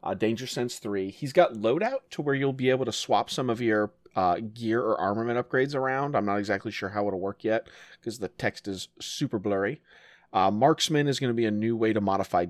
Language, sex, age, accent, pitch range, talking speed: English, male, 30-49, American, 100-120 Hz, 230 wpm